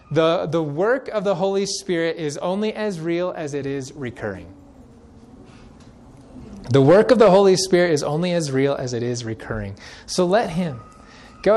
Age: 20-39